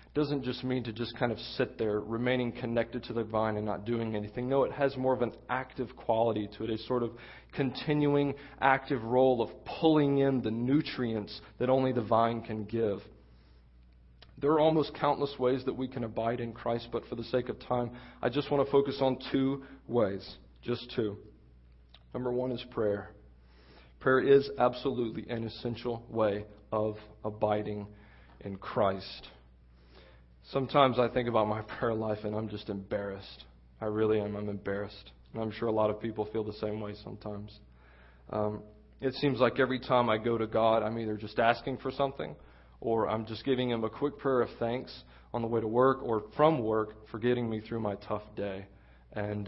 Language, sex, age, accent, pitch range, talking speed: English, male, 40-59, American, 105-125 Hz, 190 wpm